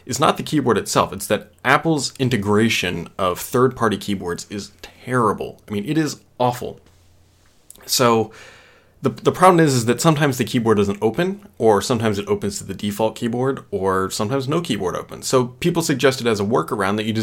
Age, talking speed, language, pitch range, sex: 20-39, 180 wpm, English, 100-130 Hz, male